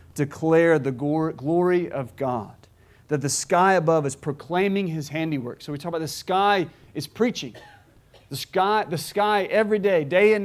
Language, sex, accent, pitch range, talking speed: English, male, American, 125-155 Hz, 165 wpm